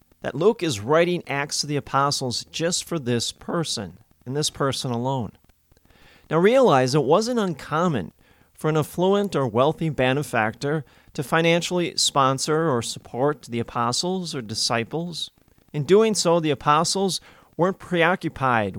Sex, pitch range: male, 120-165 Hz